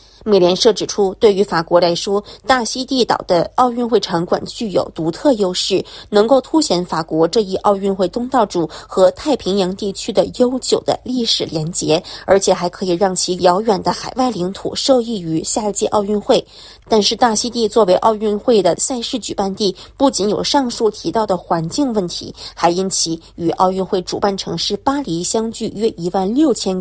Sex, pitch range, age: female, 180-240 Hz, 20-39